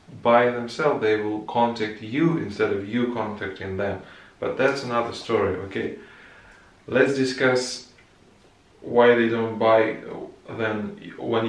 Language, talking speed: English, 125 wpm